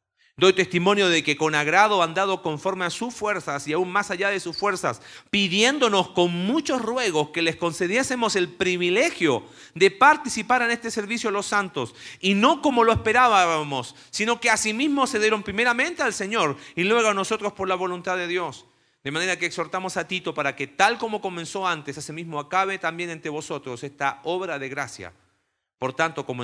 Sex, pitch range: male, 125-190 Hz